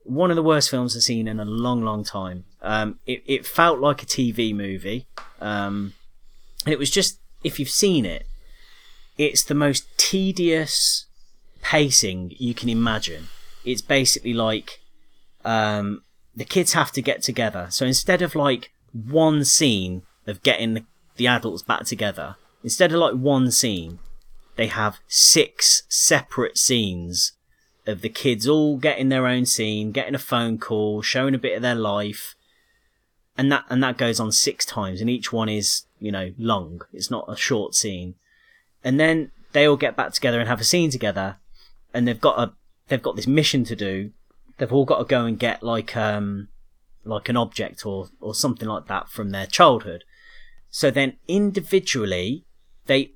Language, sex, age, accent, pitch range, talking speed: English, male, 30-49, British, 105-145 Hz, 175 wpm